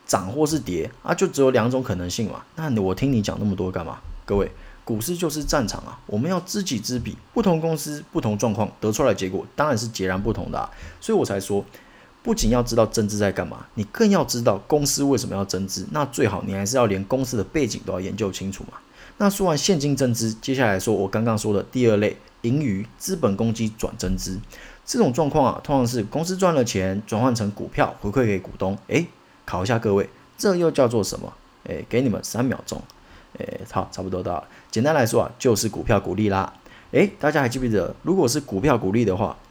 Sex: male